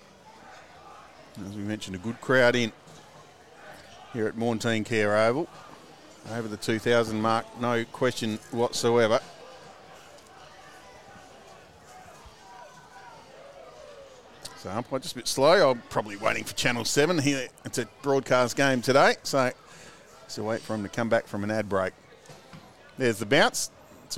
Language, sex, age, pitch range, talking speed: English, male, 40-59, 110-135 Hz, 130 wpm